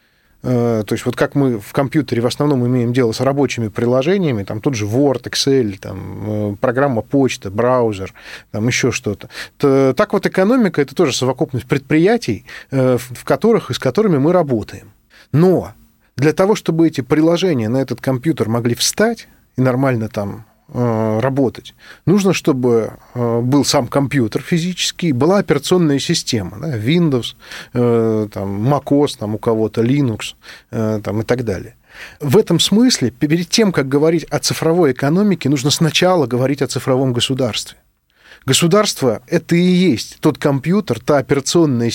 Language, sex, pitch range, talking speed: Russian, male, 115-155 Hz, 145 wpm